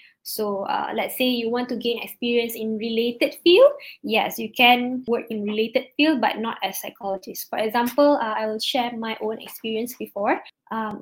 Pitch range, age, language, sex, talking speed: 220-265 Hz, 10-29, English, female, 185 wpm